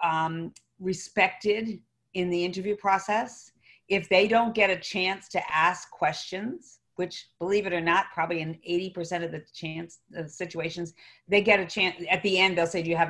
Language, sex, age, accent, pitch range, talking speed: English, female, 50-69, American, 165-190 Hz, 185 wpm